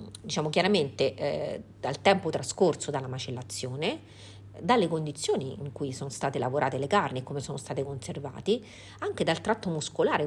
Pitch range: 135-180 Hz